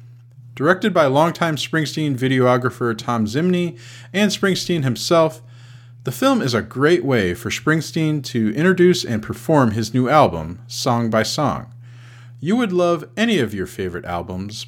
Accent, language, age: American, English, 40-59